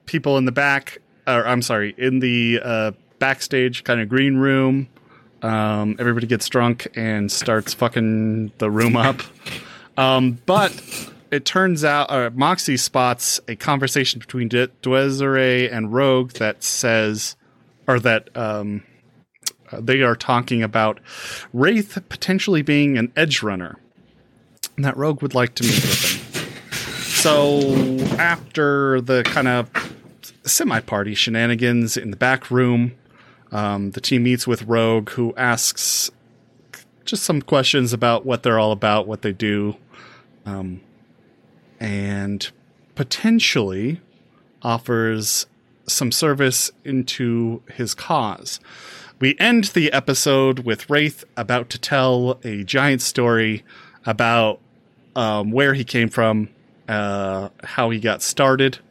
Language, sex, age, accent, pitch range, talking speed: English, male, 30-49, American, 115-135 Hz, 125 wpm